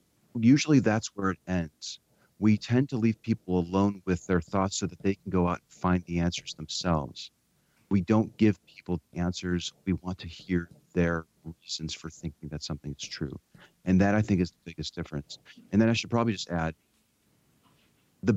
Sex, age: male, 40-59